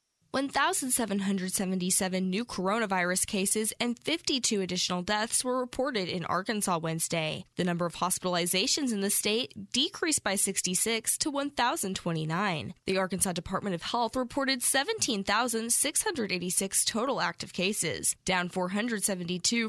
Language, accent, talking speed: English, American, 115 wpm